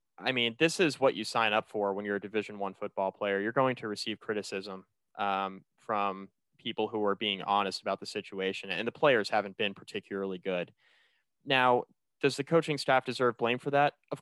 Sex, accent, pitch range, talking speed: male, American, 100-120 Hz, 205 wpm